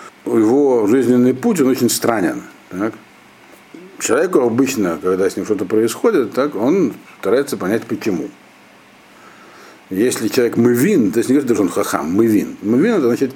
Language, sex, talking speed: Russian, male, 155 wpm